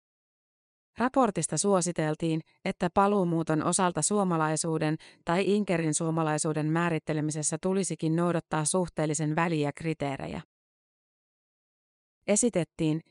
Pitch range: 155-180 Hz